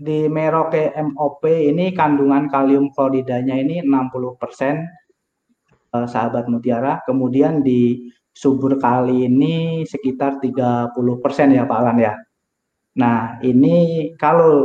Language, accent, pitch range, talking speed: Indonesian, native, 120-150 Hz, 110 wpm